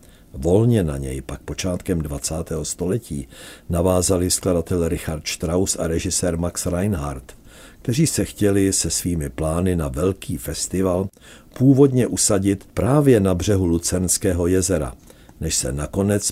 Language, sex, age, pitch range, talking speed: Czech, male, 60-79, 80-100 Hz, 125 wpm